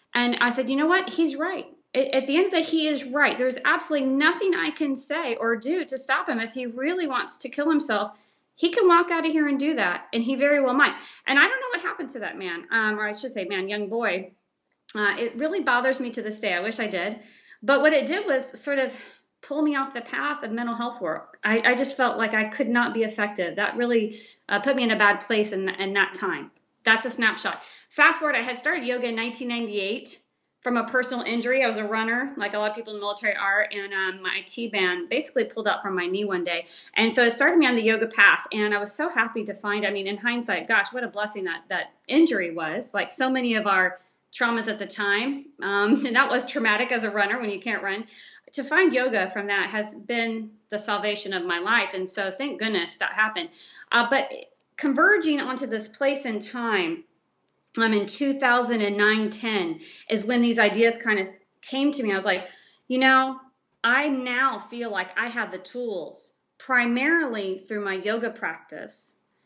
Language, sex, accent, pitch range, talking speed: English, female, American, 210-270 Hz, 225 wpm